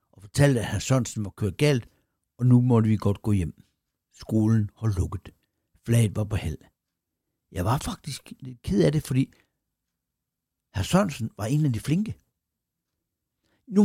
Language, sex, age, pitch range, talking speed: Danish, male, 60-79, 105-145 Hz, 160 wpm